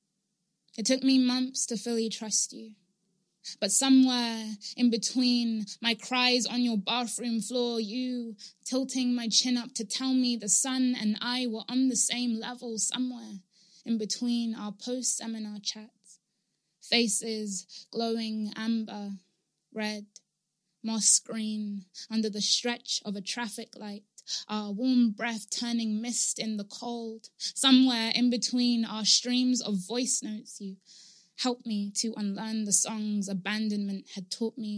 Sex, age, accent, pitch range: female, 20-39, British, 205-240 Hz